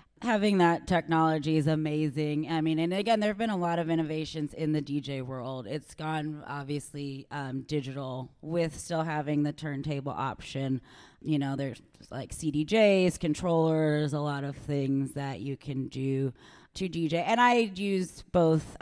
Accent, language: American, English